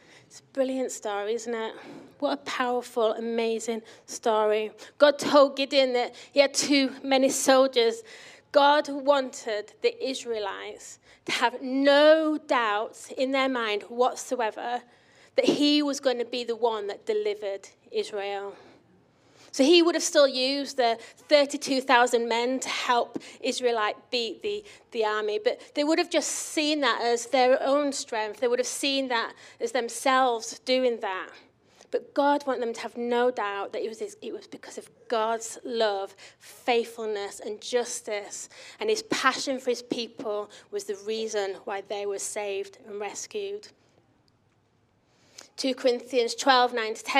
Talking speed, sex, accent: 145 wpm, female, British